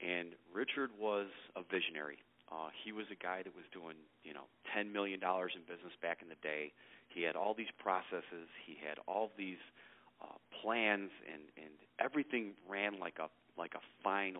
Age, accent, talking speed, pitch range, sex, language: 40-59, American, 185 wpm, 85-105 Hz, male, English